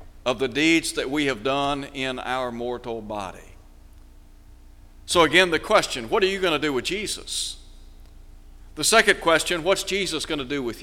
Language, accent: English, American